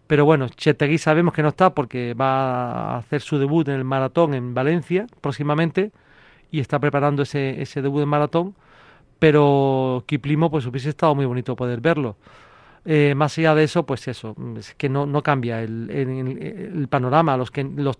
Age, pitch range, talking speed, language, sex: 40-59, 135-160 Hz, 185 wpm, Spanish, male